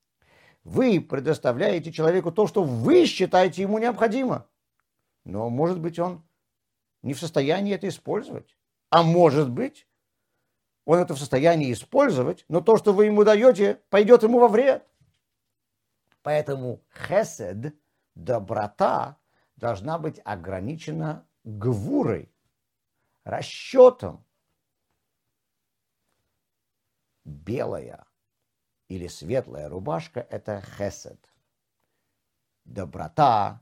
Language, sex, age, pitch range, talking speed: Russian, male, 50-69, 125-195 Hz, 90 wpm